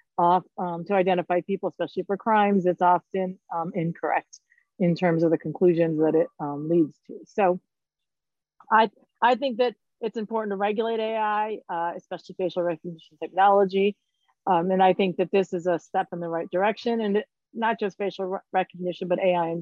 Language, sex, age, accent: English, female, 40-59, American